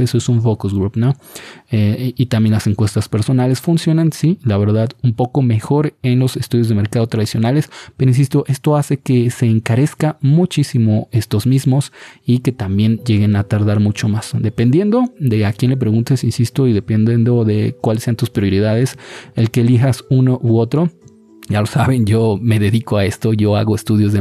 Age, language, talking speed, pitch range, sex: 30-49, Spanish, 185 wpm, 105-130 Hz, male